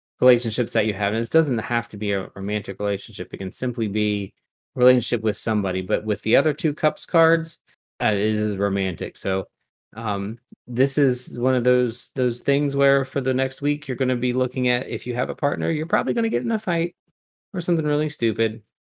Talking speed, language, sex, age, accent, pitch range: 220 wpm, English, male, 30-49, American, 105-125 Hz